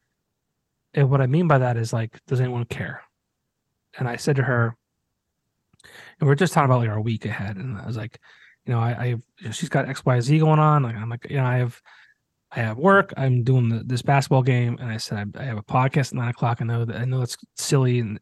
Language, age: English, 30-49